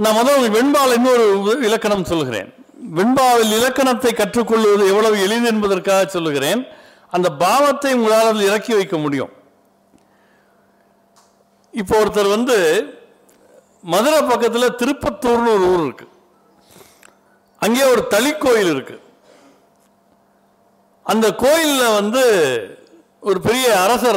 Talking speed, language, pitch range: 95 wpm, Tamil, 200-260 Hz